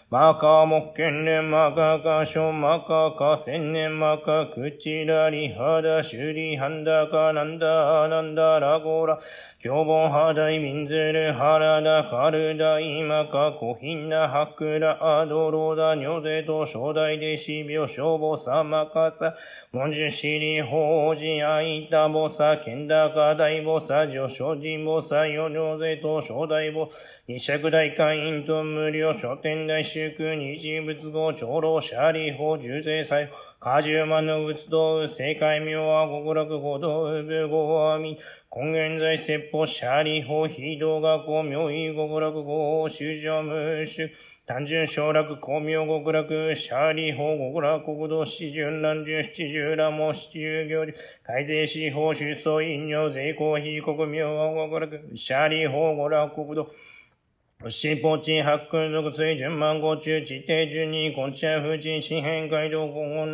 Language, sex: Japanese, male